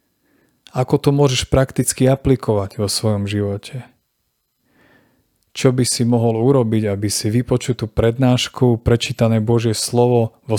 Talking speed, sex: 120 wpm, male